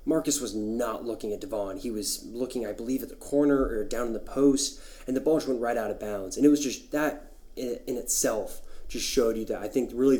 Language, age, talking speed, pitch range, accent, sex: English, 20-39, 240 wpm, 110-130 Hz, American, male